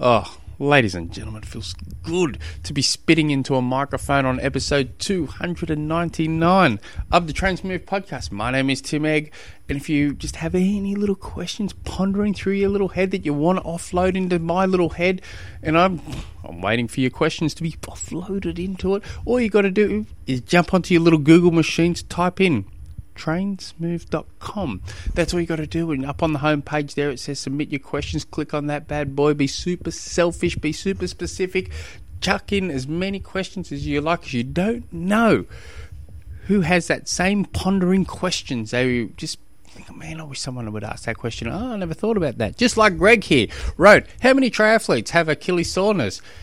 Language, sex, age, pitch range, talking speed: English, male, 20-39, 125-185 Hz, 195 wpm